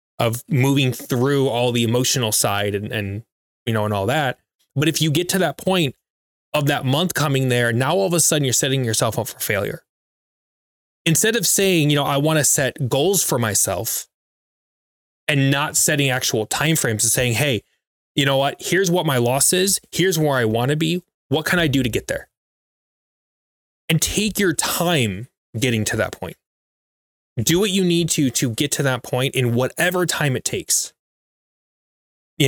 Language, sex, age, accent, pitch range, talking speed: English, male, 20-39, American, 120-160 Hz, 190 wpm